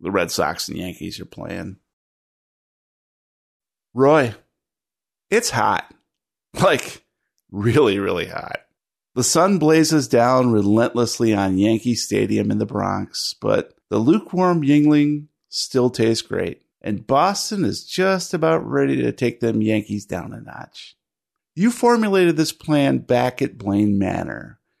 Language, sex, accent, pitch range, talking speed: English, male, American, 120-180 Hz, 130 wpm